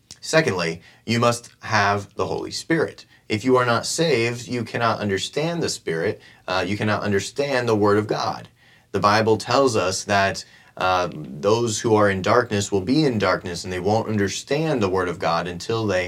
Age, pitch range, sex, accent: 30-49, 95-120 Hz, male, American